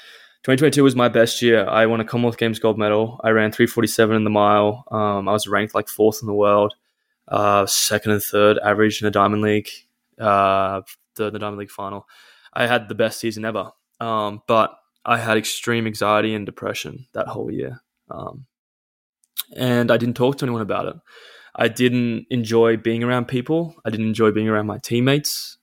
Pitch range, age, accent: 105-115 Hz, 20-39, Australian